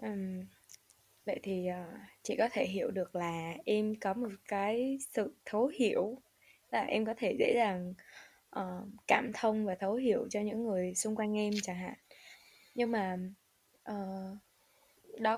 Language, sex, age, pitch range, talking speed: Vietnamese, female, 10-29, 195-255 Hz, 145 wpm